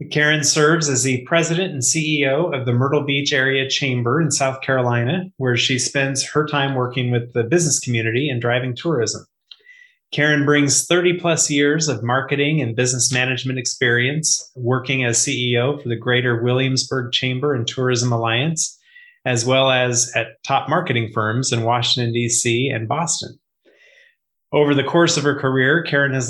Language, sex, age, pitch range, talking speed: English, male, 30-49, 120-145 Hz, 160 wpm